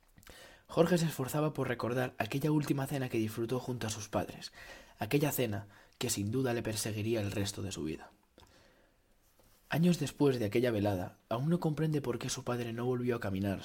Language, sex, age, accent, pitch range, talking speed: Spanish, male, 20-39, Spanish, 110-135 Hz, 185 wpm